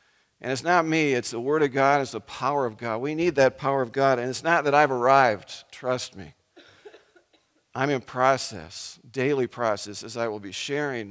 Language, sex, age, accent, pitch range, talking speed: English, male, 50-69, American, 130-160 Hz, 205 wpm